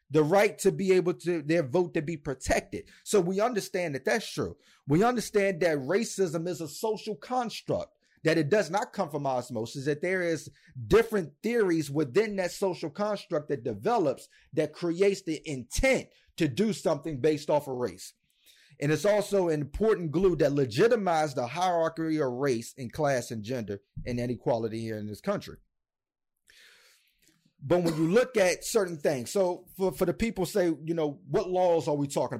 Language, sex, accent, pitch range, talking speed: English, male, American, 145-185 Hz, 175 wpm